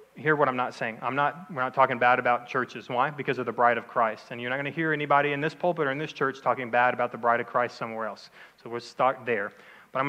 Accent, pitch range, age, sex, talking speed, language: American, 125-155 Hz, 30-49, male, 290 wpm, English